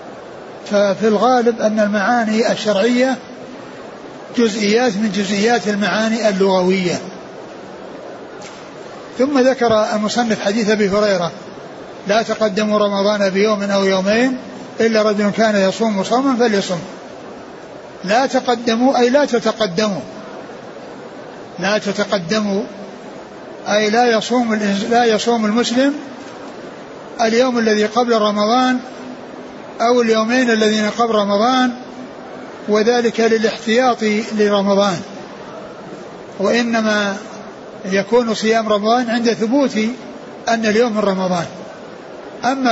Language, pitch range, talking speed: Arabic, 210-240 Hz, 90 wpm